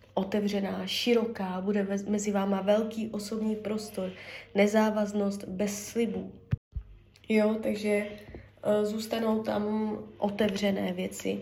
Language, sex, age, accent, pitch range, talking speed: Czech, female, 20-39, native, 185-220 Hz, 90 wpm